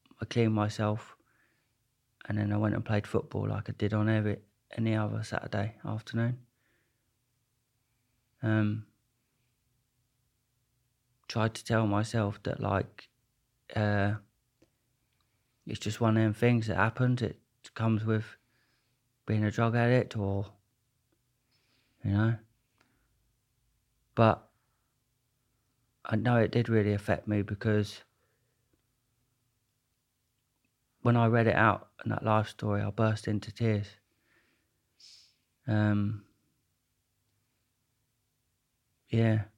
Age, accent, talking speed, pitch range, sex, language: 30-49, British, 105 wpm, 105-120 Hz, male, English